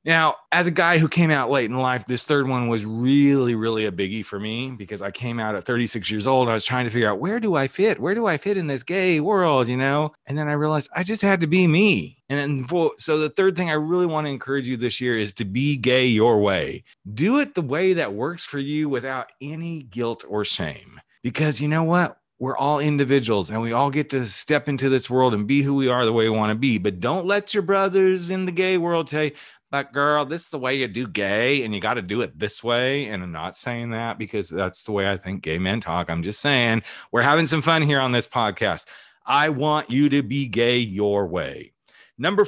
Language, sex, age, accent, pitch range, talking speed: English, male, 40-59, American, 120-165 Hz, 250 wpm